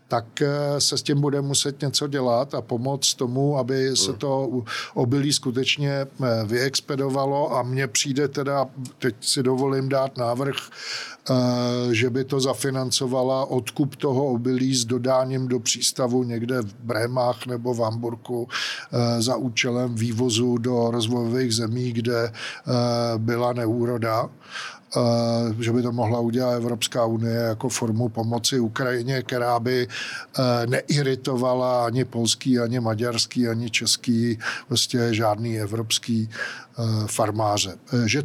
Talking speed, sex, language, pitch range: 120 wpm, male, Czech, 120-135 Hz